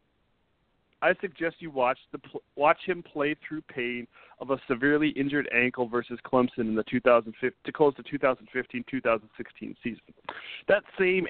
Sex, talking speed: male, 145 wpm